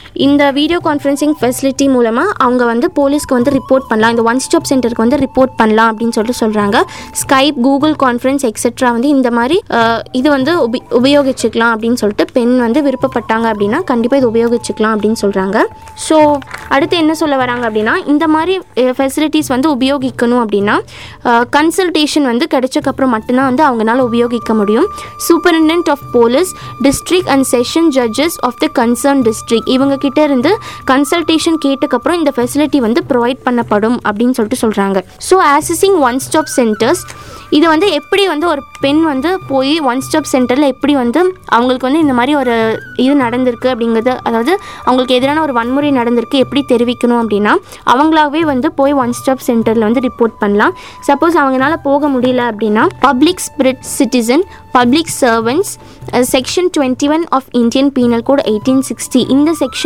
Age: 20-39